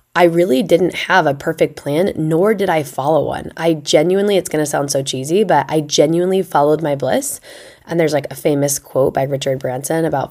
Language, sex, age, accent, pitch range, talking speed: English, female, 20-39, American, 140-170 Hz, 210 wpm